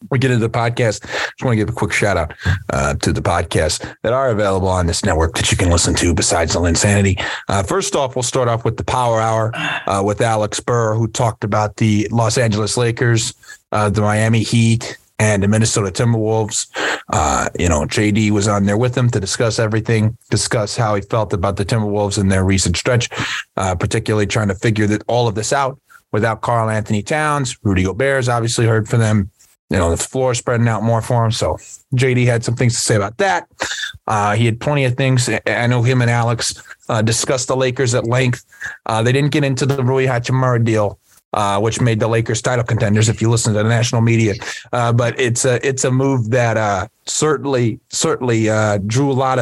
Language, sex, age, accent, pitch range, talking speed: English, male, 30-49, American, 105-125 Hz, 215 wpm